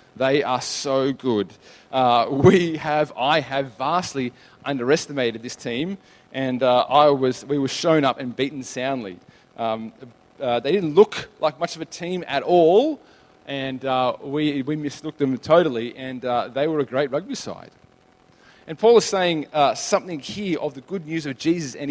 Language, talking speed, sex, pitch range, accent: English, 180 wpm, male, 135-180 Hz, Australian